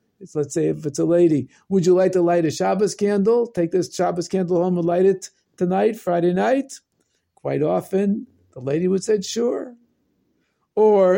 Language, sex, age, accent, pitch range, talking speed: English, male, 50-69, American, 150-205 Hz, 175 wpm